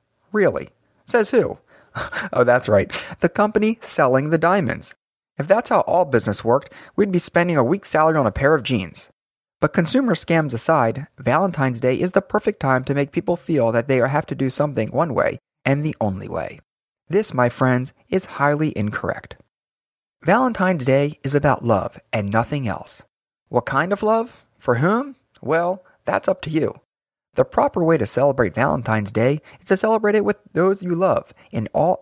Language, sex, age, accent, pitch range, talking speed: English, male, 30-49, American, 130-185 Hz, 180 wpm